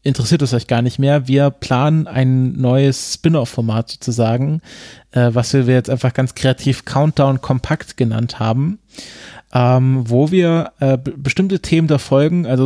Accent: German